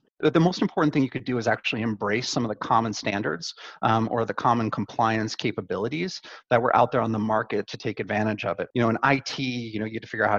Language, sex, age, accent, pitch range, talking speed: English, male, 30-49, American, 110-140 Hz, 260 wpm